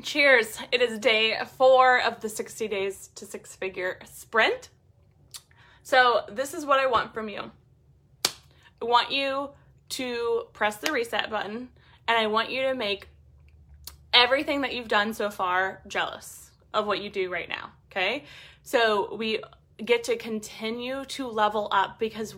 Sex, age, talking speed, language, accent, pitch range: female, 20-39, 155 wpm, English, American, 205-255 Hz